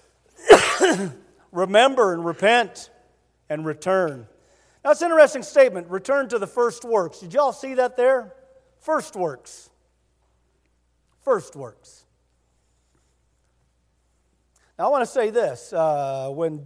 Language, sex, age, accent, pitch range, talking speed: English, male, 50-69, American, 135-215 Hz, 120 wpm